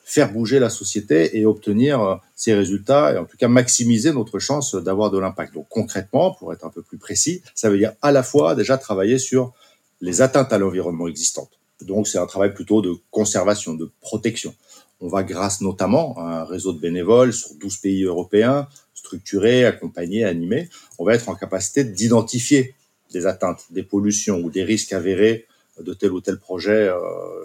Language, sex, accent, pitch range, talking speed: French, male, French, 90-130 Hz, 185 wpm